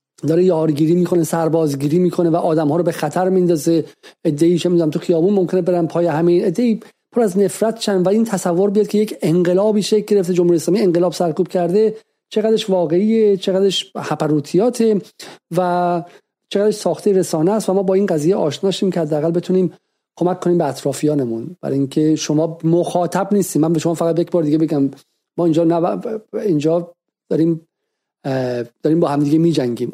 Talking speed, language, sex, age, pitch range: 170 wpm, Persian, male, 40-59, 155-185 Hz